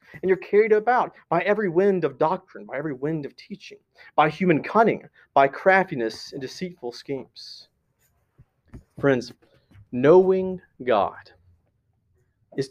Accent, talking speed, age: American, 125 wpm, 30-49